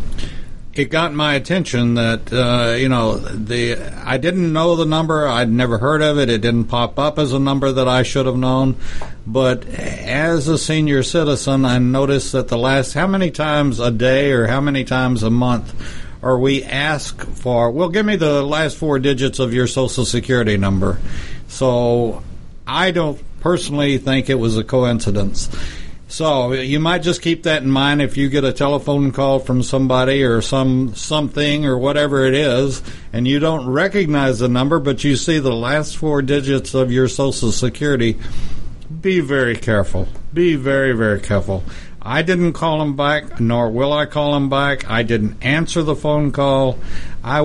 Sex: male